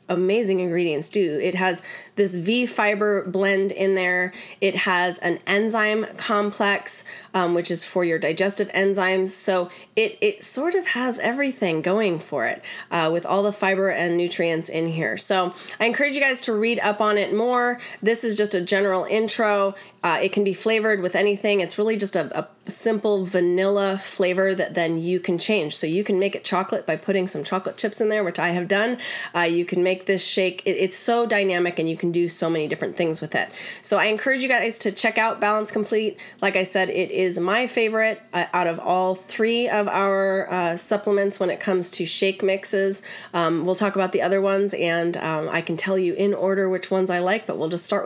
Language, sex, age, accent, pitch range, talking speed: English, female, 30-49, American, 180-210 Hz, 210 wpm